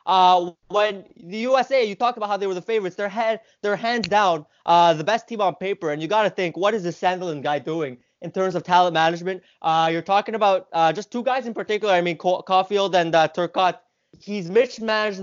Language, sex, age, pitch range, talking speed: English, male, 20-39, 165-205 Hz, 235 wpm